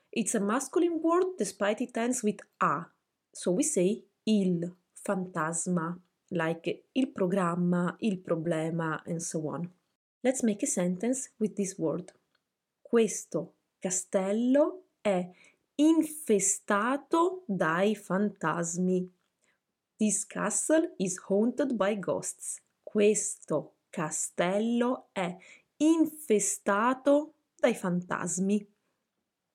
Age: 20-39